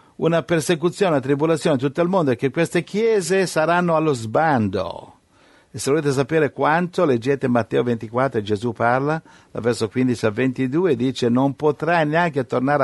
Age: 60-79